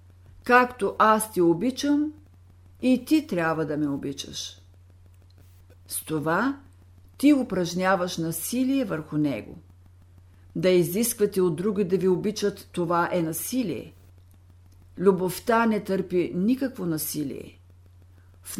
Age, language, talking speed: 60-79, Bulgarian, 105 wpm